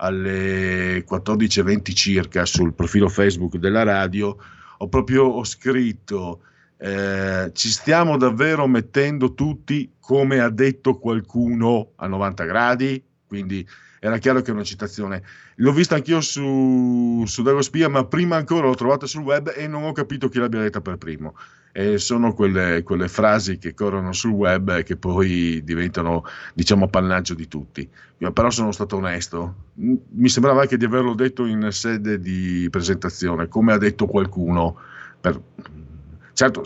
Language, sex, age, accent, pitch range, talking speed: Italian, male, 50-69, native, 90-125 Hz, 150 wpm